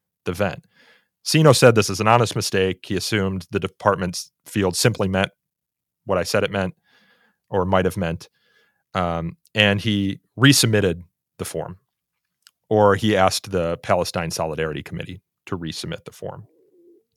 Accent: American